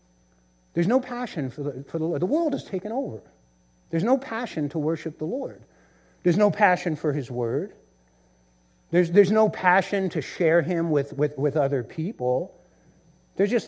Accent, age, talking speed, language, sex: American, 60-79, 175 wpm, English, male